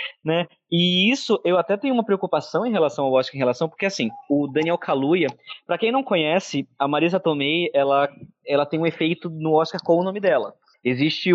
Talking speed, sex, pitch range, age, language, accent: 200 wpm, male, 140-185 Hz, 20-39, Portuguese, Brazilian